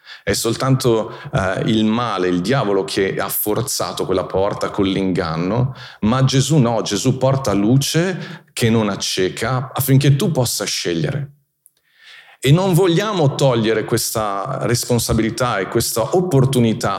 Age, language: 40-59, Italian